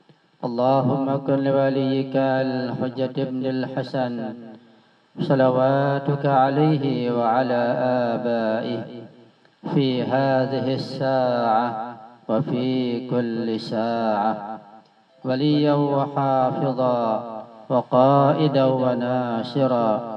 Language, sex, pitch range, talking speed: Indonesian, male, 115-135 Hz, 60 wpm